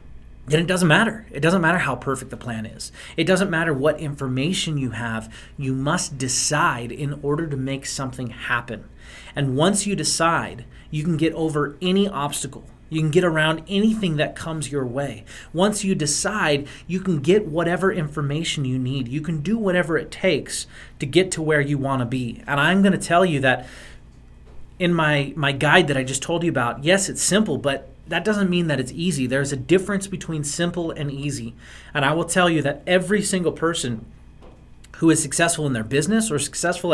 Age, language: 30-49, English